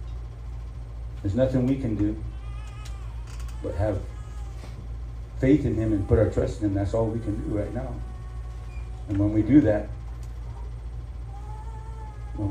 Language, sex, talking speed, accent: English, male, 140 wpm, American